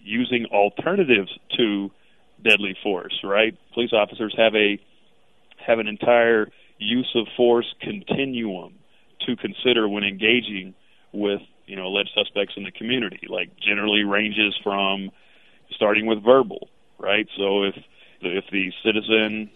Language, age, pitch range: English, 40-59, 100-115 Hz